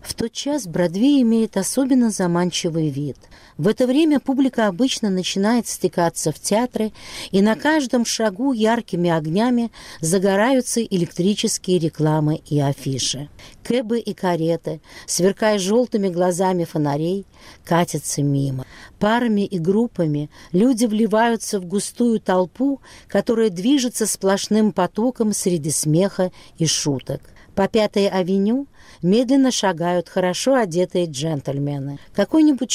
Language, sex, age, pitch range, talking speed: Russian, female, 50-69, 155-215 Hz, 115 wpm